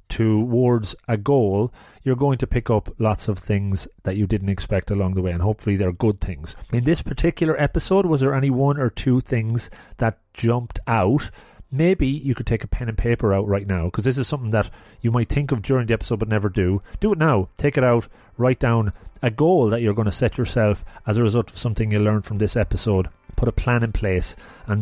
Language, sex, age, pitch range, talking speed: English, male, 30-49, 100-120 Hz, 230 wpm